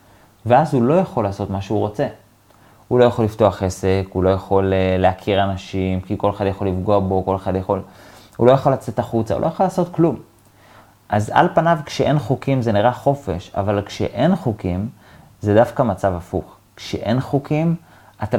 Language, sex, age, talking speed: Hebrew, male, 30-49, 180 wpm